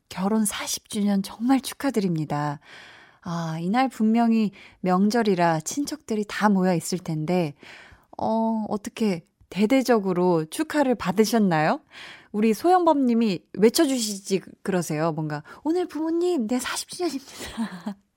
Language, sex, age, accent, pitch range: Korean, female, 20-39, native, 180-245 Hz